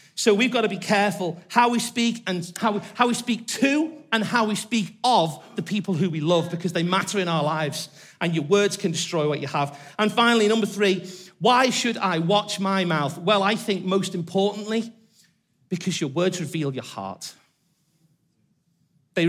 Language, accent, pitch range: English, British, 175-235 Hz